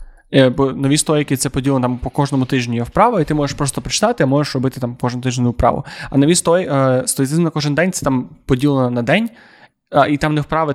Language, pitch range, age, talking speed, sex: Ukrainian, 125-150 Hz, 20-39, 220 wpm, male